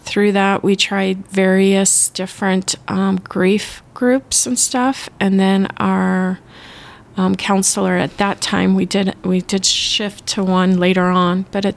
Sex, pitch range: female, 180-200 Hz